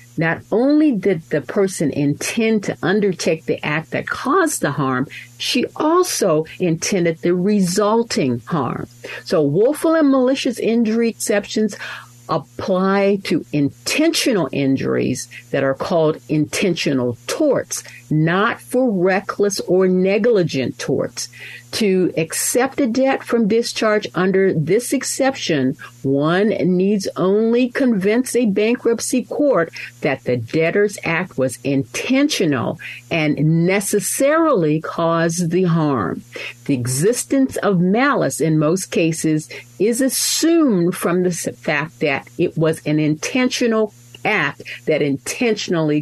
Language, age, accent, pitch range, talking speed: English, 50-69, American, 145-230 Hz, 115 wpm